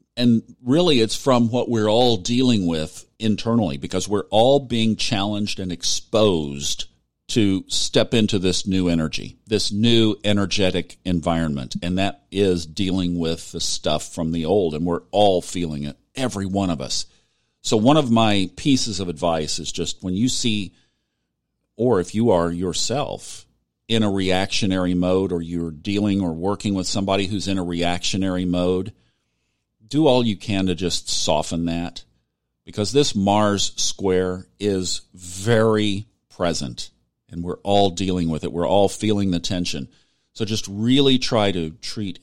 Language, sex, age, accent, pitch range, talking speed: English, male, 50-69, American, 85-110 Hz, 160 wpm